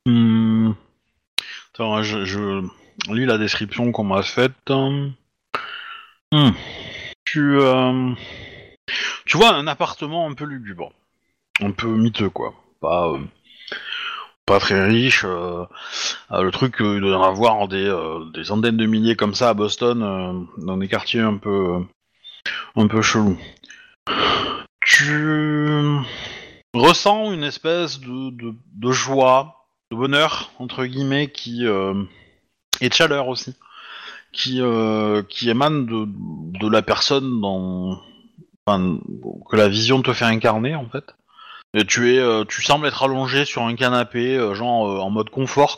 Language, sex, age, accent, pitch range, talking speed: French, male, 30-49, French, 105-130 Hz, 145 wpm